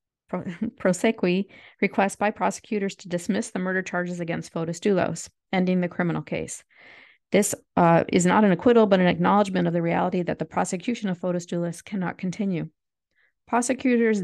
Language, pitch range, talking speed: English, 175-215 Hz, 160 wpm